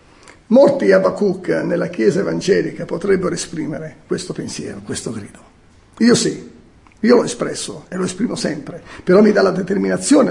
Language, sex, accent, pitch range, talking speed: Italian, male, native, 175-225 Hz, 150 wpm